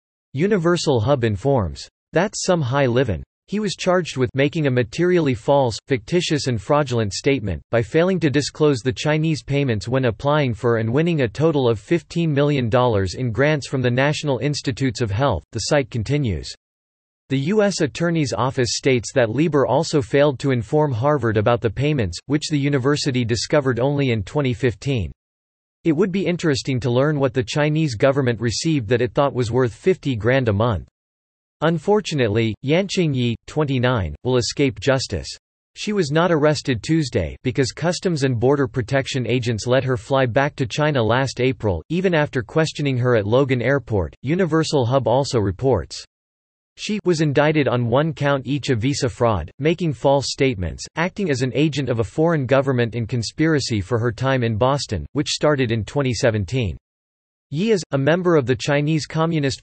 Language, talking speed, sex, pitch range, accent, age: English, 165 wpm, male, 115-150 Hz, American, 40-59